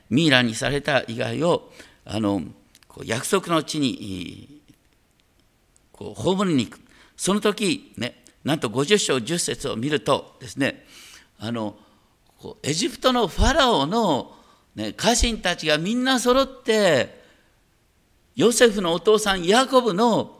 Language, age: Japanese, 50-69